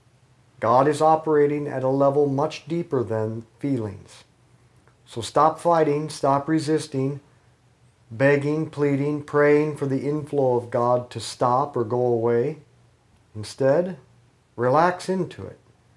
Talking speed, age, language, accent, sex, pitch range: 120 wpm, 50-69, English, American, male, 115-145 Hz